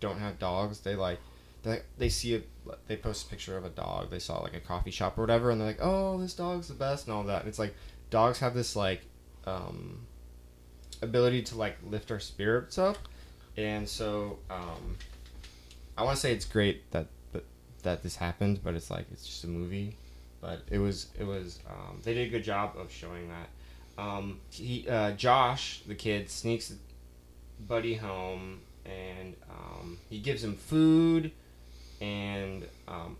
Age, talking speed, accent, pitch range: 20-39, 185 wpm, American, 75-110 Hz